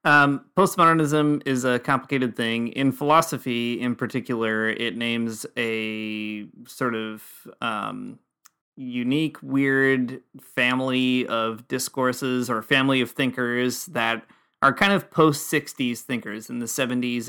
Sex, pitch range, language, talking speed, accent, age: male, 120-140 Hz, English, 120 wpm, American, 30-49